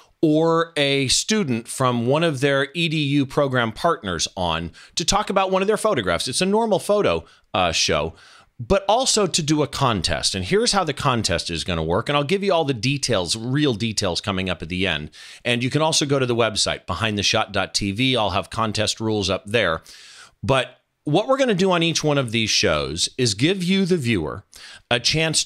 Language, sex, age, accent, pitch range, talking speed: English, male, 40-59, American, 115-170 Hz, 205 wpm